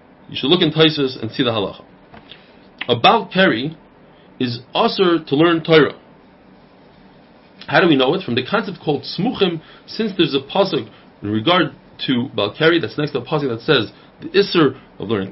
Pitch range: 140-195 Hz